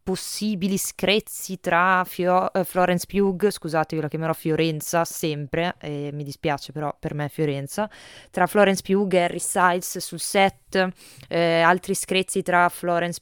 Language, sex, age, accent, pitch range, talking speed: Italian, female, 20-39, native, 150-185 Hz, 150 wpm